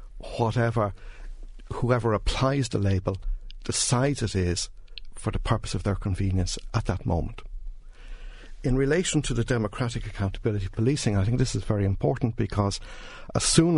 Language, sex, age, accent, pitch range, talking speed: English, male, 60-79, Irish, 95-120 Hz, 150 wpm